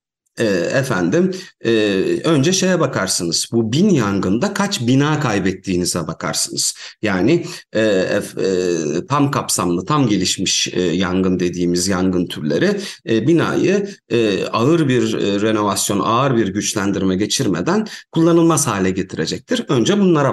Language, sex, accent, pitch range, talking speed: Turkish, male, native, 100-155 Hz, 95 wpm